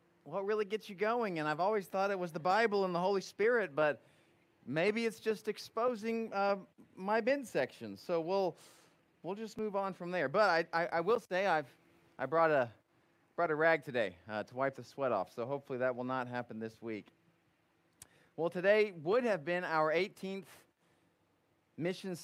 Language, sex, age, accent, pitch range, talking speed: English, male, 30-49, American, 135-180 Hz, 190 wpm